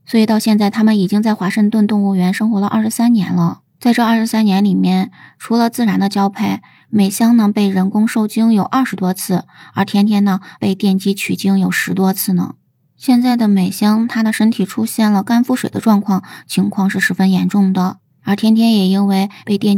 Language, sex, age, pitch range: Chinese, female, 20-39, 190-220 Hz